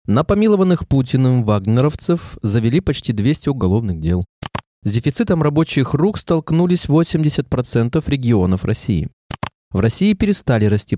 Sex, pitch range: male, 105-160 Hz